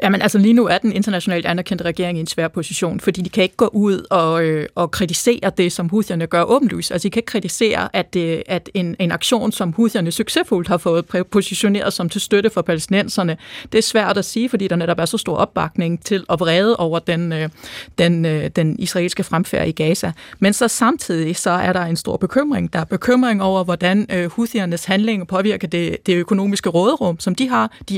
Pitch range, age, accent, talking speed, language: 175-215 Hz, 30-49, native, 215 wpm, Danish